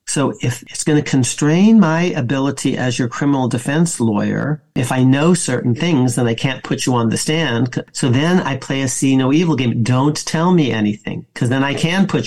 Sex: male